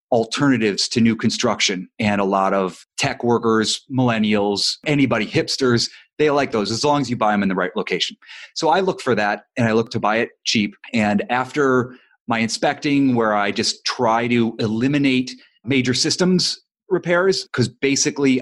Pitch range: 110-135 Hz